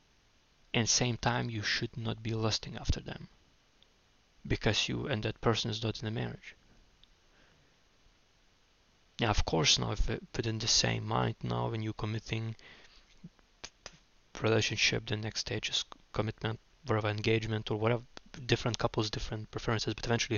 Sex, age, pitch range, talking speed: male, 20-39, 105-115 Hz, 145 wpm